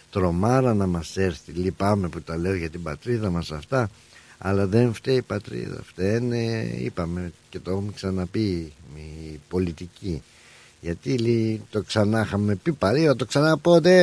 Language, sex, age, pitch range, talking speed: Greek, male, 60-79, 90-135 Hz, 160 wpm